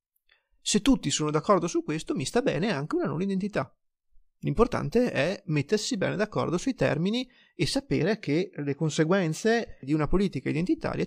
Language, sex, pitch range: Italian, male, 150-205 Hz